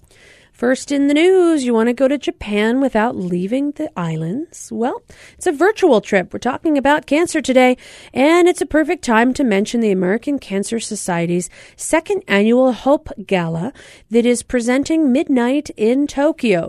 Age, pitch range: 40-59, 200-275 Hz